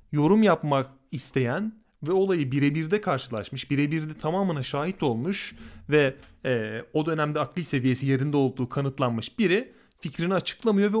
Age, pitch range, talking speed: 30-49, 130-170 Hz, 130 wpm